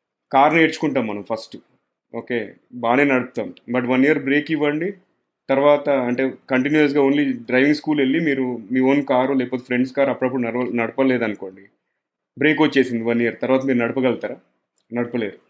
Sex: male